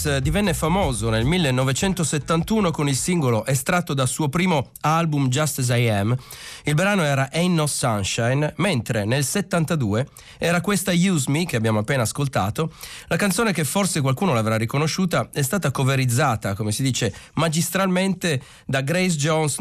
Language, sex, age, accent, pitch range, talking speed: Italian, male, 40-59, native, 120-170 Hz, 155 wpm